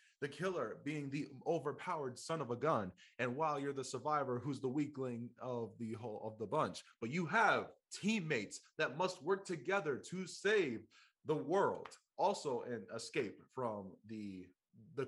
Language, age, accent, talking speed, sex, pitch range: English, 20-39, American, 165 wpm, male, 110-160 Hz